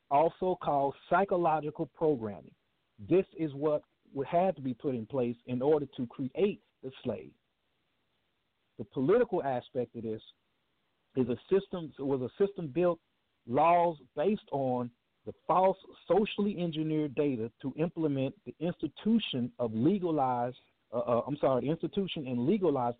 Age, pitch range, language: 50-69, 130-175 Hz, English